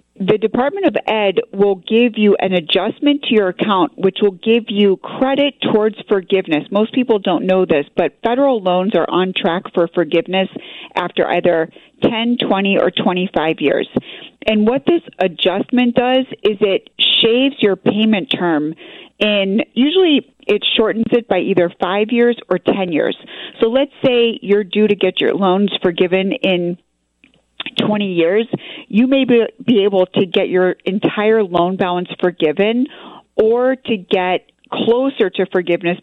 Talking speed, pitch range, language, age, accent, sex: 155 wpm, 180-230 Hz, English, 40-59, American, female